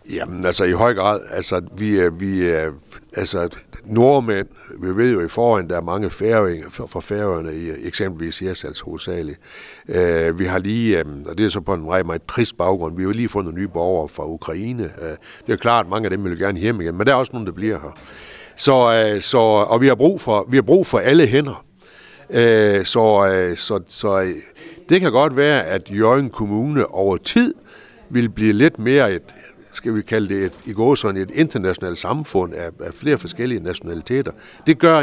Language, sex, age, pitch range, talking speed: Danish, male, 60-79, 90-120 Hz, 190 wpm